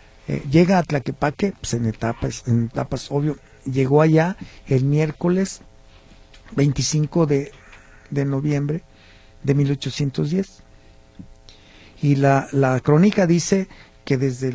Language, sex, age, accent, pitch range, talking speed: Spanish, male, 50-69, Mexican, 130-160 Hz, 110 wpm